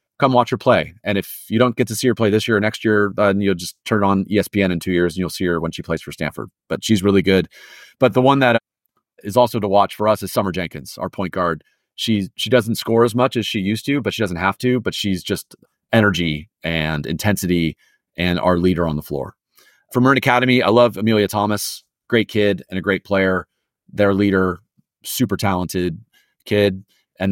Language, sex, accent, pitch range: English, male, American, 90-110 Hz